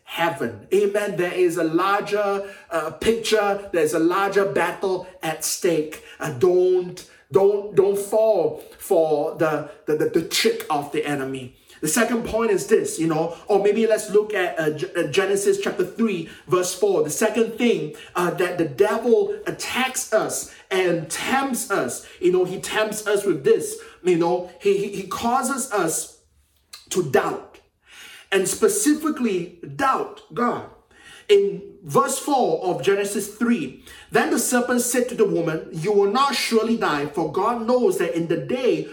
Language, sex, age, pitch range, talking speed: English, male, 30-49, 170-250 Hz, 160 wpm